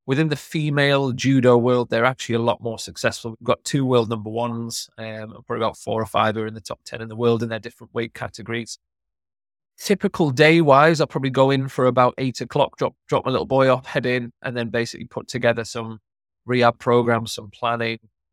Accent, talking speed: British, 205 wpm